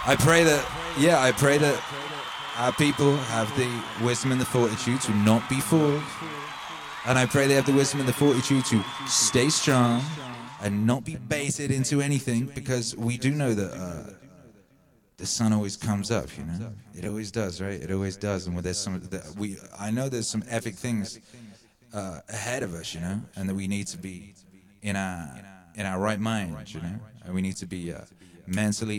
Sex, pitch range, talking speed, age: male, 95-125 Hz, 200 wpm, 30-49